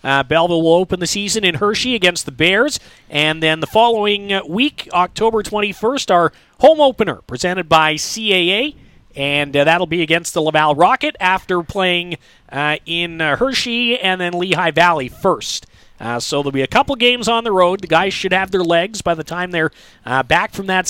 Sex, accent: male, American